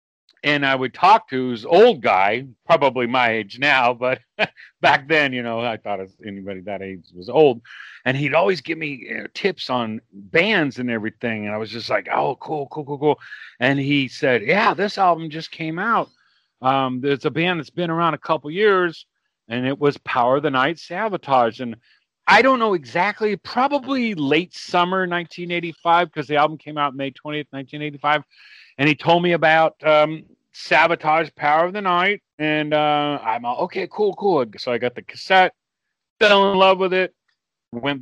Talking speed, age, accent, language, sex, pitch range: 185 wpm, 40-59, American, English, male, 125-160 Hz